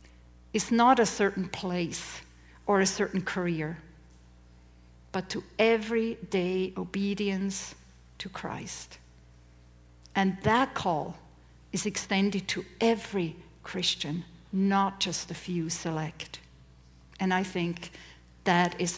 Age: 50-69